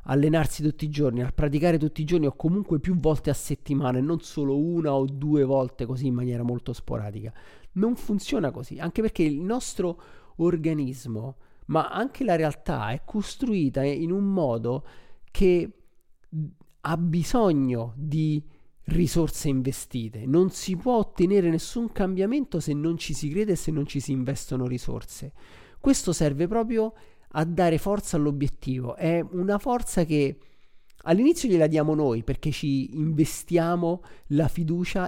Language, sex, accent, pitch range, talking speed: Italian, male, native, 140-185 Hz, 150 wpm